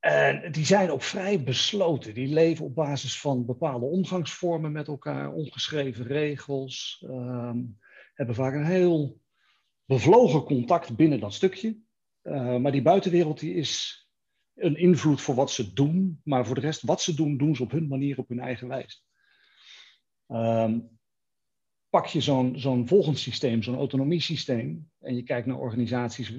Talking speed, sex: 155 wpm, male